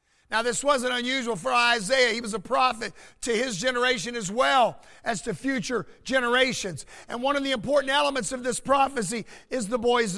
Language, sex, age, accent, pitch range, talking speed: English, male, 50-69, American, 240-290 Hz, 185 wpm